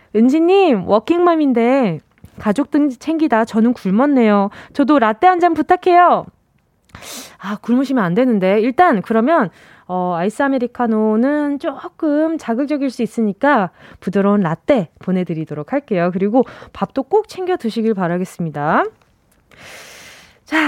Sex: female